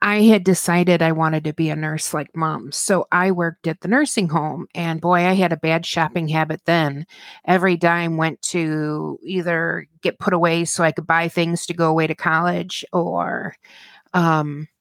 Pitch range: 160-195 Hz